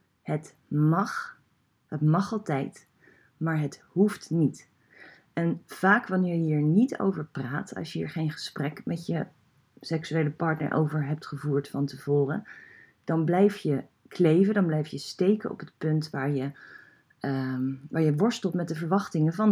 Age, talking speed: 30-49, 155 wpm